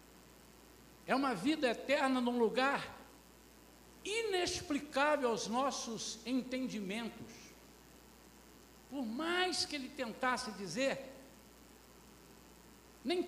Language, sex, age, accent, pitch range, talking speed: Portuguese, male, 60-79, Brazilian, 225-295 Hz, 75 wpm